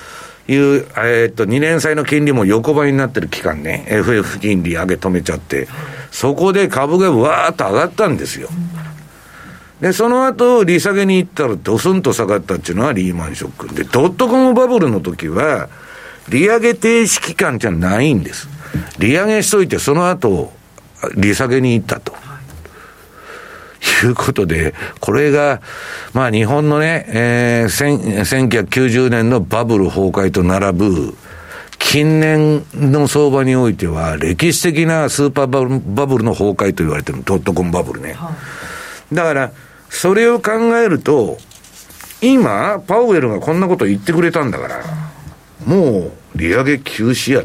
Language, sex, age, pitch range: Japanese, male, 60-79, 110-180 Hz